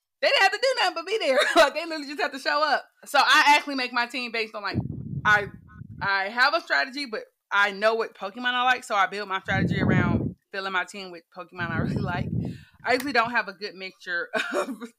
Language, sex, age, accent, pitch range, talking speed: English, female, 20-39, American, 175-250 Hz, 240 wpm